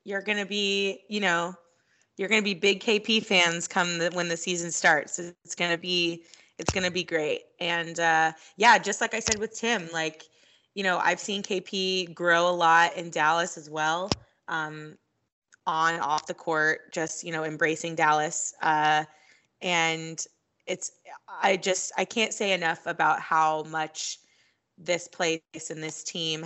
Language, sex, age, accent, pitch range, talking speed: English, female, 20-39, American, 165-190 Hz, 170 wpm